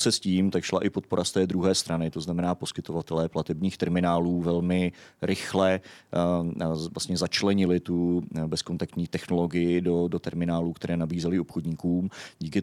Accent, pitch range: native, 85-95 Hz